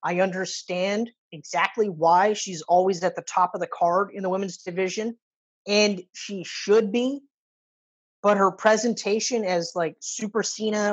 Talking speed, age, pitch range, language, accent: 150 wpm, 20-39, 180-220 Hz, English, American